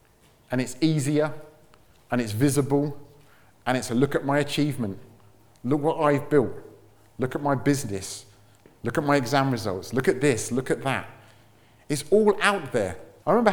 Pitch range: 125-190 Hz